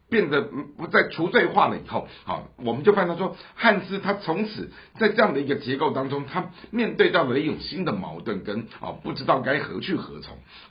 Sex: male